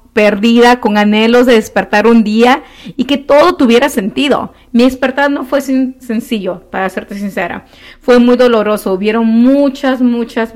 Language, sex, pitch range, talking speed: Spanish, female, 200-250 Hz, 150 wpm